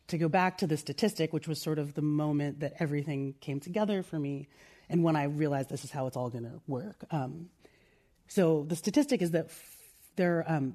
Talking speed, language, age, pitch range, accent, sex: 210 wpm, English, 30-49, 150-180 Hz, American, female